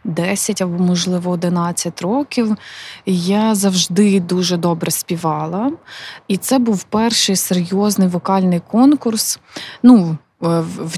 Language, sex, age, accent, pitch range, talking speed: Ukrainian, female, 20-39, native, 185-225 Hz, 105 wpm